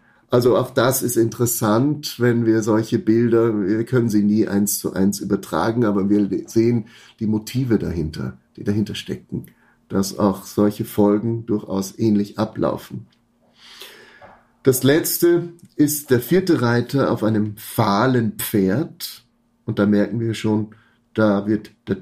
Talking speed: 140 wpm